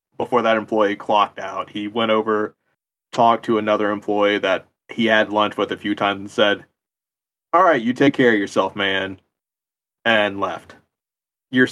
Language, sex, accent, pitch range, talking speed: English, male, American, 105-120 Hz, 170 wpm